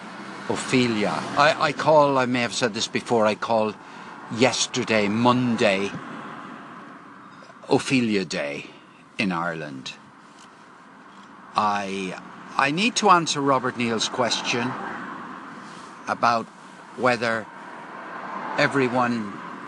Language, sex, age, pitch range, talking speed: English, male, 60-79, 105-130 Hz, 90 wpm